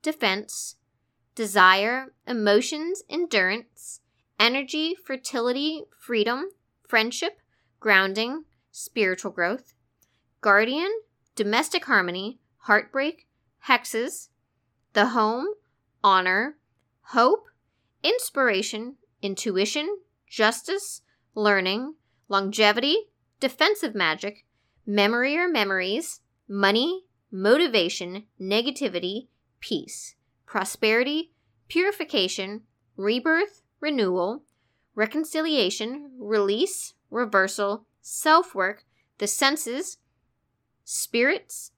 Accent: American